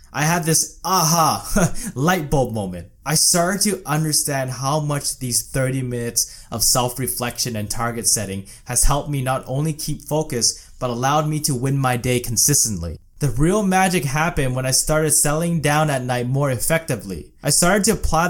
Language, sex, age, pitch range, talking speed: English, male, 20-39, 125-165 Hz, 175 wpm